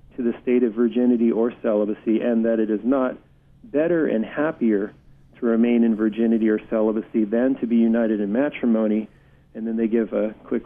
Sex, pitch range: male, 115-130 Hz